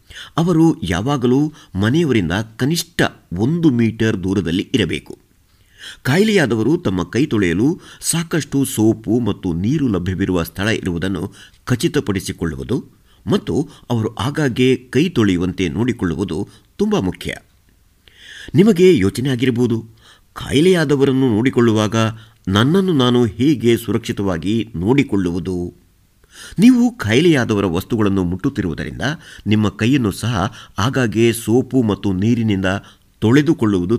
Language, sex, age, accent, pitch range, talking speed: Kannada, male, 50-69, native, 95-135 Hz, 90 wpm